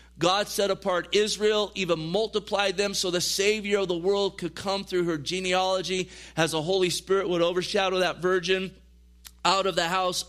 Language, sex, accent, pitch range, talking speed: English, male, American, 170-195 Hz, 175 wpm